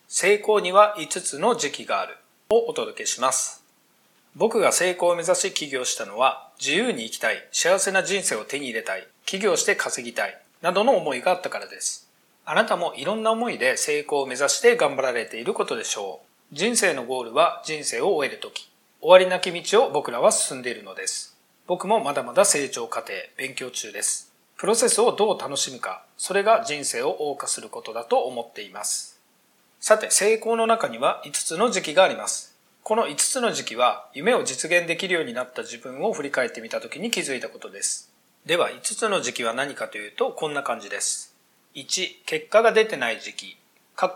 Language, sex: Japanese, male